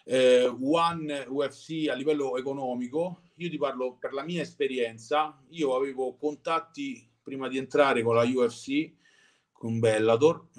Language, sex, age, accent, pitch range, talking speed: Italian, male, 40-59, native, 120-155 Hz, 135 wpm